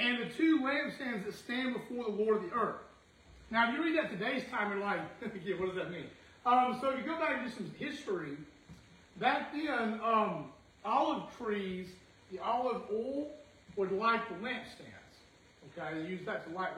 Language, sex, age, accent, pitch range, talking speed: English, male, 40-59, American, 205-255 Hz, 185 wpm